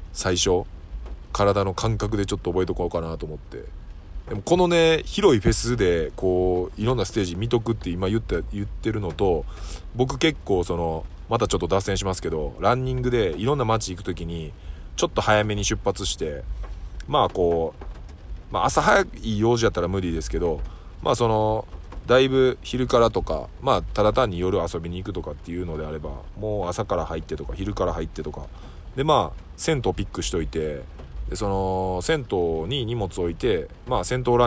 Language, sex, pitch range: Japanese, male, 80-115 Hz